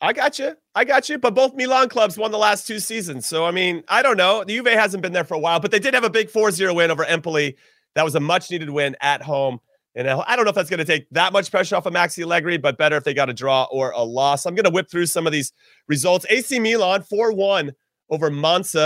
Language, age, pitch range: English, 30-49, 140-195 Hz